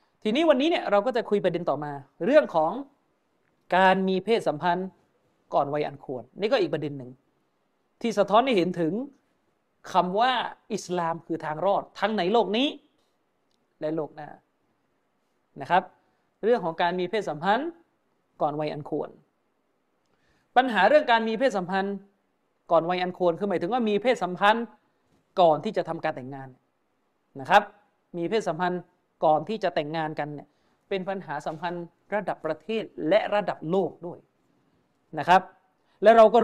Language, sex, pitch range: Thai, male, 170-220 Hz